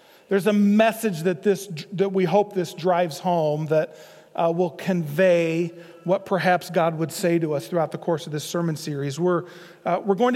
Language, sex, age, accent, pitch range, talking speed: English, male, 40-59, American, 180-250 Hz, 190 wpm